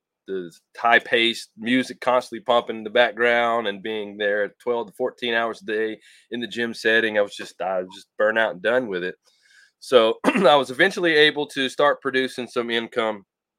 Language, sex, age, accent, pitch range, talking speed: English, male, 20-39, American, 105-130 Hz, 200 wpm